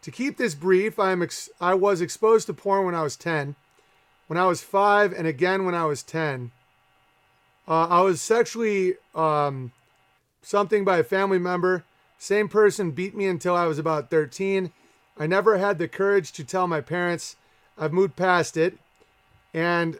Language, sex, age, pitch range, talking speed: English, male, 30-49, 155-185 Hz, 170 wpm